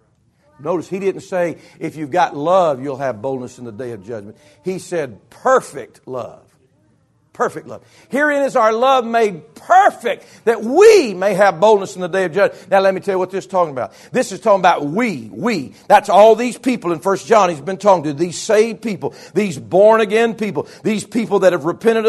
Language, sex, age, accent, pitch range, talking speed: English, male, 50-69, American, 190-275 Hz, 210 wpm